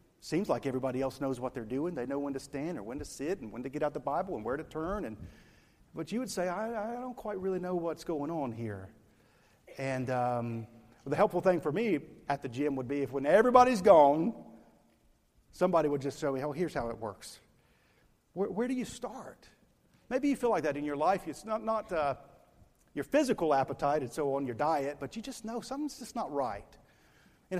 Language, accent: English, American